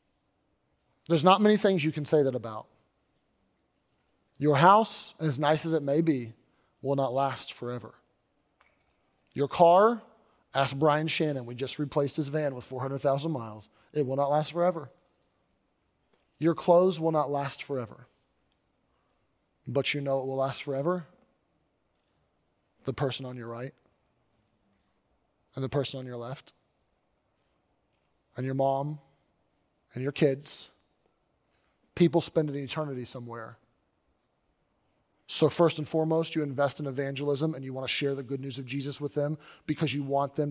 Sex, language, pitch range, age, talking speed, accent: male, English, 130-160 Hz, 30-49, 145 wpm, American